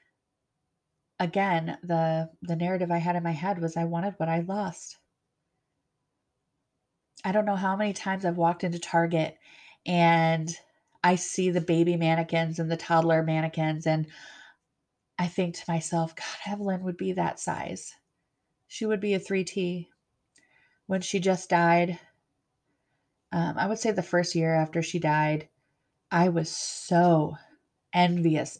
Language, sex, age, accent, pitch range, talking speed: English, female, 30-49, American, 165-190 Hz, 145 wpm